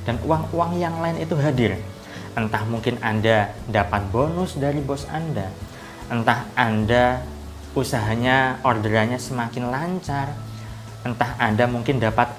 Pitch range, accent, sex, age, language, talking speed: 110-145 Hz, native, male, 20-39, Indonesian, 115 wpm